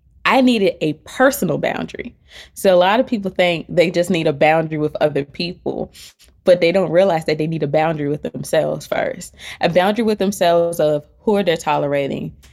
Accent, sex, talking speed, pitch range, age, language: American, female, 190 wpm, 155-205 Hz, 20-39, English